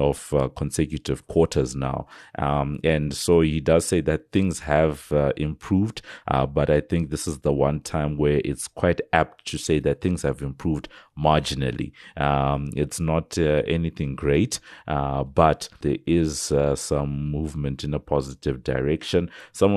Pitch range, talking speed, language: 70-80 Hz, 165 wpm, English